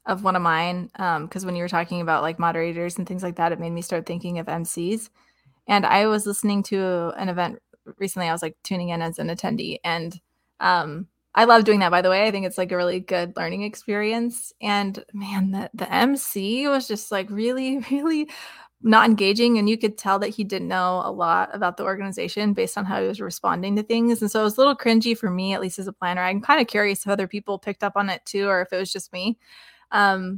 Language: English